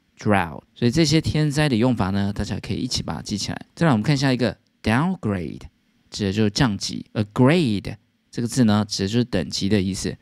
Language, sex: Chinese, male